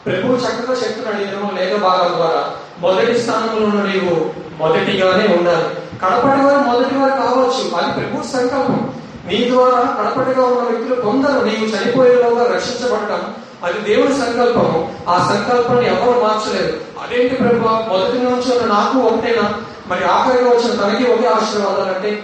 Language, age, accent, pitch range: Telugu, 30-49, native, 205-250 Hz